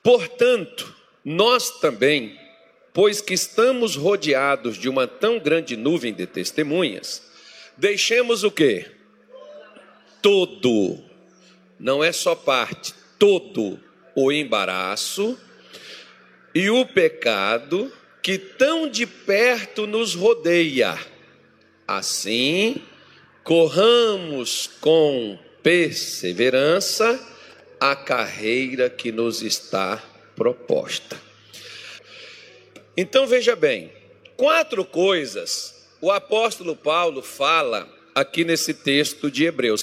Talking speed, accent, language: 85 wpm, Brazilian, Portuguese